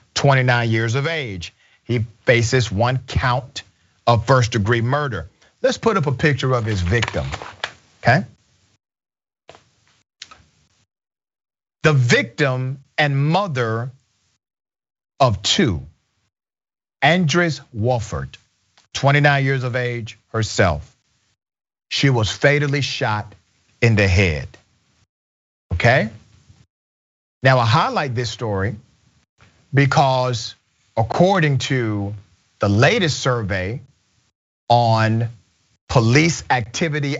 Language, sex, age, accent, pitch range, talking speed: English, male, 40-59, American, 105-145 Hz, 90 wpm